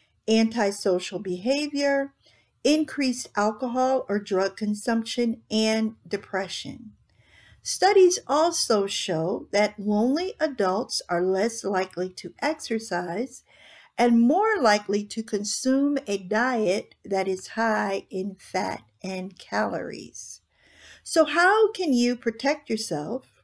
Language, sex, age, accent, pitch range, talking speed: English, female, 50-69, American, 200-275 Hz, 100 wpm